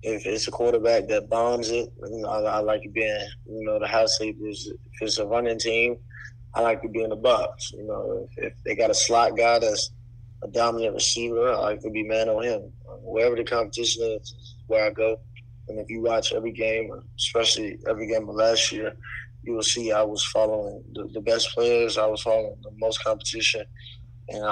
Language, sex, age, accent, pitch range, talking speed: English, male, 20-39, American, 110-120 Hz, 205 wpm